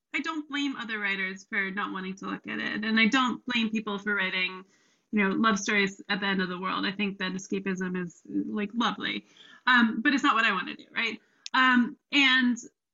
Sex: female